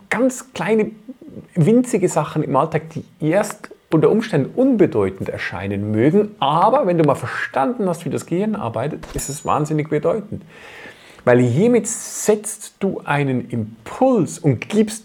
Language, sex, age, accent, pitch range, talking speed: German, male, 40-59, German, 115-180 Hz, 140 wpm